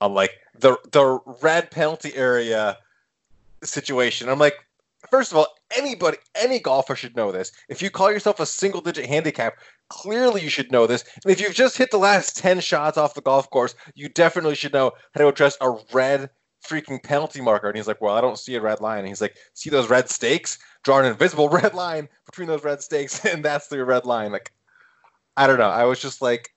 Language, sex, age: English, male, 20-39